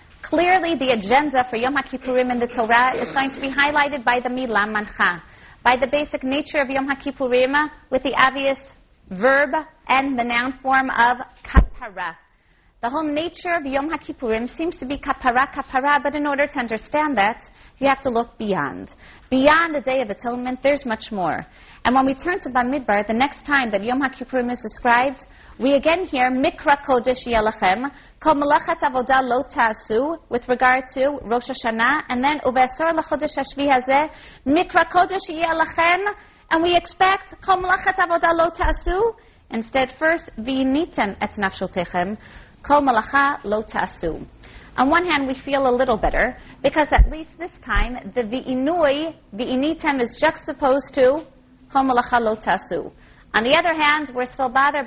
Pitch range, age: 245-295 Hz, 30-49